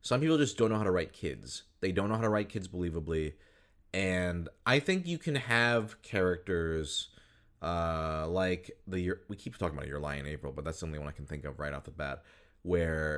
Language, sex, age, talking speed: English, male, 30-49, 225 wpm